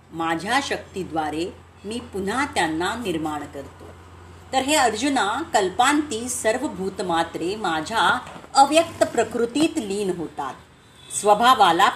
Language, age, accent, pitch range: Marathi, 40-59, native, 170-260 Hz